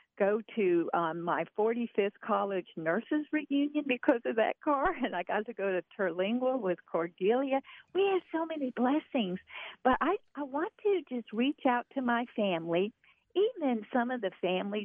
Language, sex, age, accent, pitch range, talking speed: English, female, 50-69, American, 200-275 Hz, 170 wpm